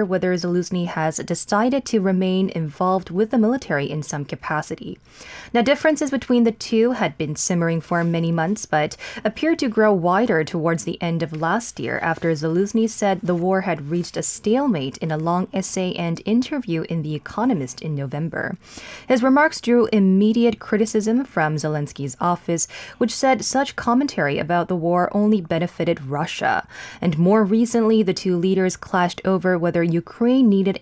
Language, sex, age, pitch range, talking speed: English, female, 10-29, 165-220 Hz, 165 wpm